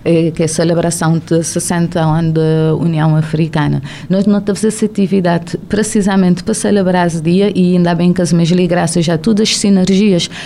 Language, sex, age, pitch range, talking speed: Portuguese, female, 30-49, 175-215 Hz, 170 wpm